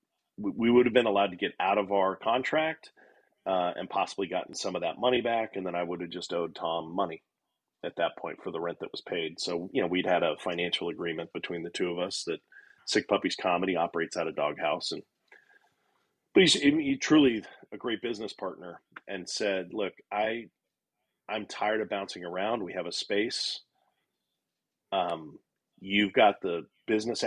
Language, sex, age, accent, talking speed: English, male, 40-59, American, 190 wpm